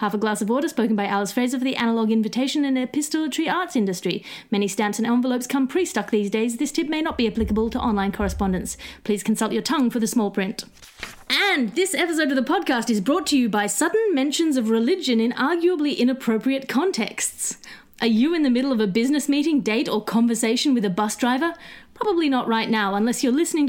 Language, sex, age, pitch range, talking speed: English, female, 30-49, 215-290 Hz, 215 wpm